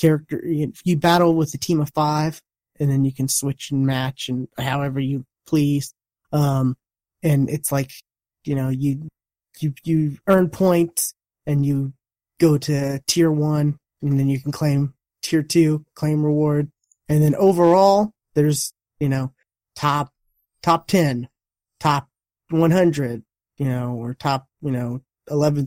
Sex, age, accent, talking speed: male, 20-39, American, 150 wpm